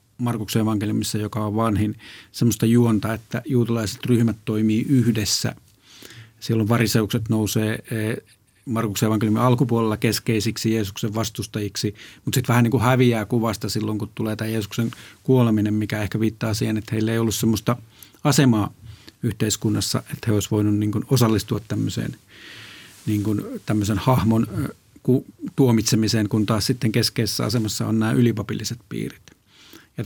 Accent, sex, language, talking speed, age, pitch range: native, male, Finnish, 130 wpm, 50-69, 105-120 Hz